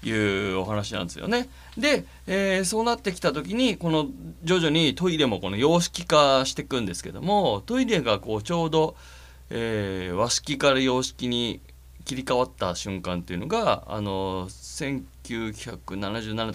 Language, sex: Japanese, male